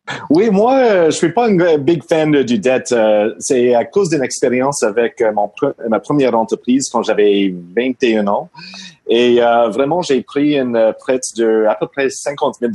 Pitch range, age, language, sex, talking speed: 110-150 Hz, 30-49, French, male, 190 wpm